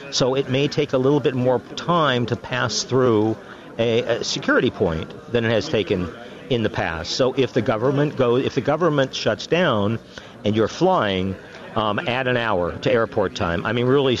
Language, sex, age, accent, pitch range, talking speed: English, male, 50-69, American, 110-140 Hz, 195 wpm